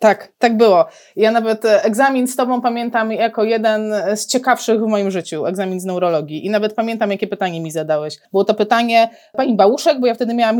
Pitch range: 200-250 Hz